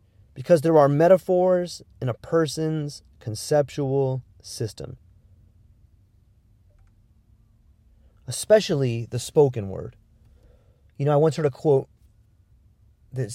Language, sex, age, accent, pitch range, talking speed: English, male, 30-49, American, 105-140 Hz, 95 wpm